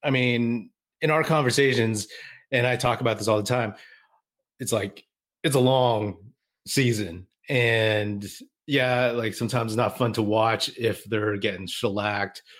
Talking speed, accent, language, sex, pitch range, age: 150 wpm, American, English, male, 105-130 Hz, 30-49